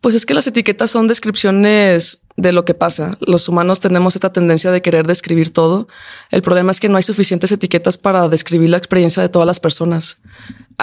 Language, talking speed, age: Spanish, 205 wpm, 20-39